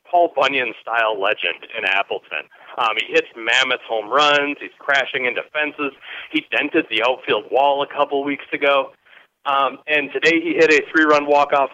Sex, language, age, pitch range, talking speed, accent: male, English, 40-59, 135-175 Hz, 165 wpm, American